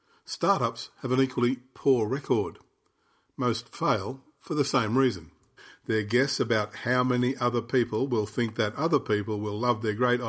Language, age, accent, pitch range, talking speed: English, 50-69, Australian, 115-140 Hz, 165 wpm